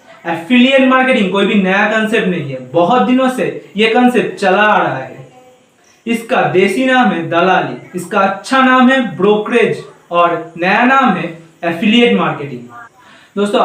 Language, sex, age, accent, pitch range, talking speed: Hindi, male, 40-59, native, 180-250 Hz, 150 wpm